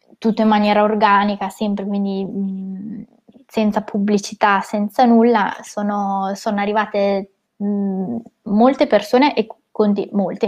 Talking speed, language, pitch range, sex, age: 120 wpm, Italian, 195-225 Hz, female, 20-39